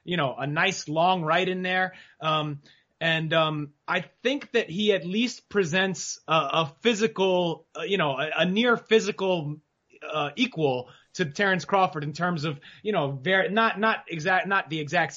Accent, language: American, English